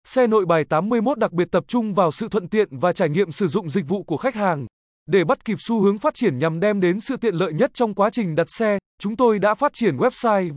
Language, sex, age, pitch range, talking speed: Vietnamese, male, 20-39, 175-230 Hz, 265 wpm